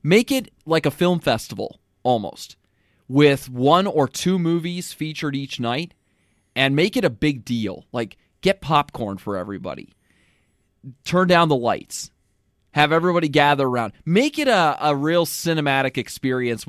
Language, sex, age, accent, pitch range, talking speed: English, male, 20-39, American, 115-160 Hz, 145 wpm